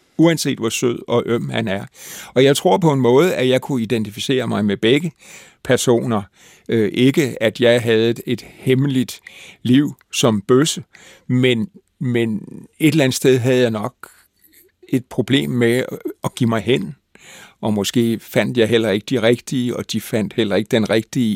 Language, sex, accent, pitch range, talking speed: Danish, male, native, 110-140 Hz, 170 wpm